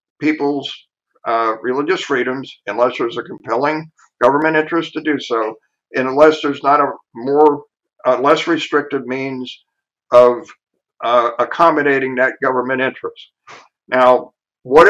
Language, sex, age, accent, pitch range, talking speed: English, male, 60-79, American, 140-170 Hz, 125 wpm